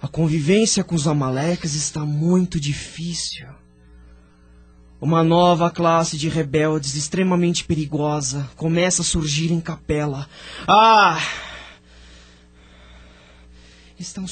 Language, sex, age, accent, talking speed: Portuguese, male, 20-39, Brazilian, 90 wpm